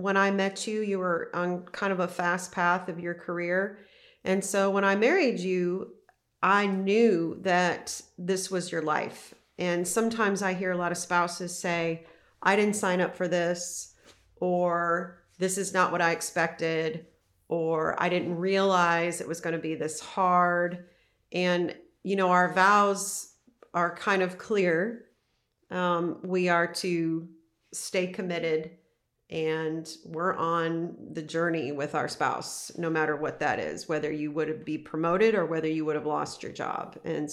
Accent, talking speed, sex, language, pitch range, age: American, 165 wpm, female, English, 165-195 Hz, 40-59